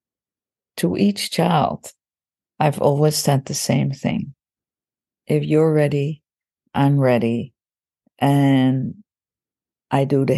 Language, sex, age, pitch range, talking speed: English, female, 50-69, 145-195 Hz, 105 wpm